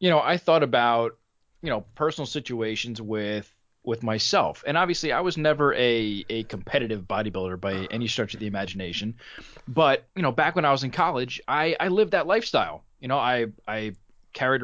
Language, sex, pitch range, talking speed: English, male, 110-140 Hz, 190 wpm